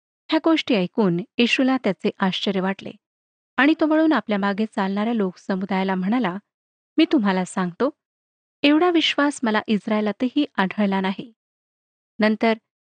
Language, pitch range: Marathi, 195-265 Hz